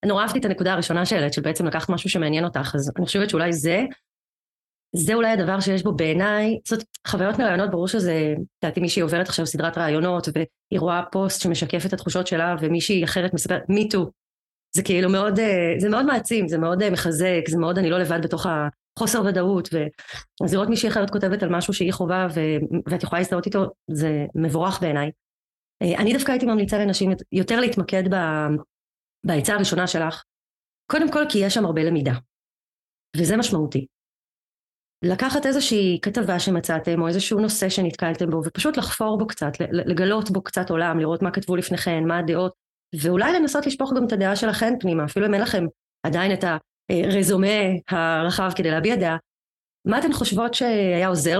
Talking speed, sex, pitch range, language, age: 155 wpm, female, 165-205 Hz, Hebrew, 30-49